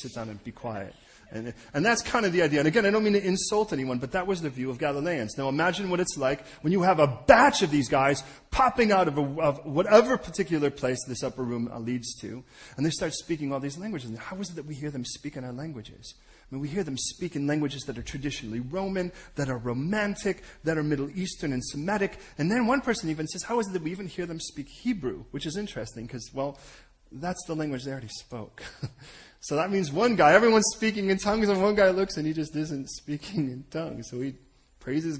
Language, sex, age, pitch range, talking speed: English, male, 30-49, 125-180 Hz, 245 wpm